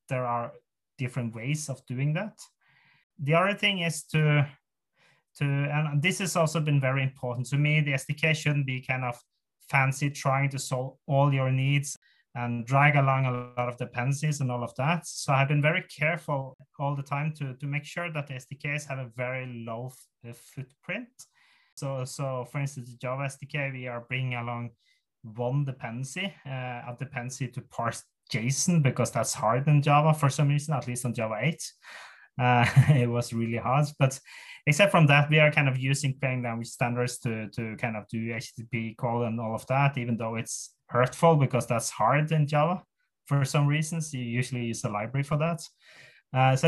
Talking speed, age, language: 190 wpm, 30-49, English